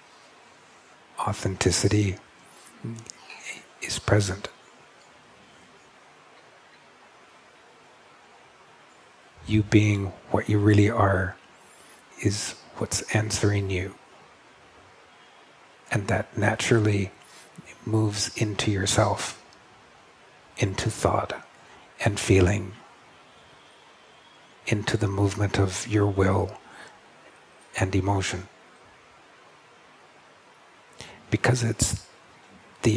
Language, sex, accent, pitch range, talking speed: English, male, American, 95-110 Hz, 60 wpm